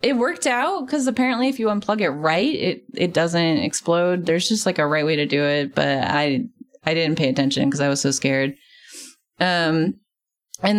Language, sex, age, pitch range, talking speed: English, female, 20-39, 160-245 Hz, 200 wpm